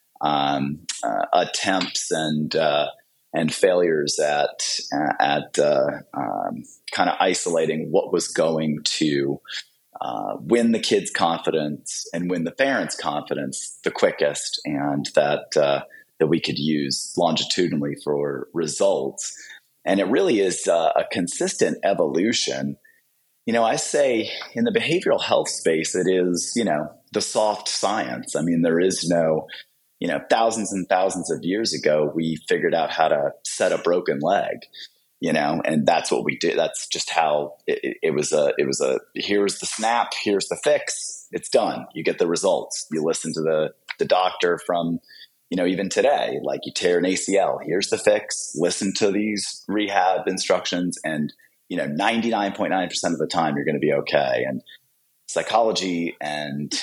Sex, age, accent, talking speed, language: male, 30-49, American, 165 wpm, English